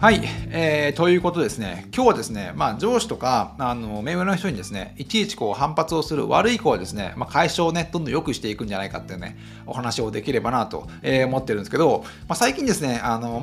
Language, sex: Japanese, male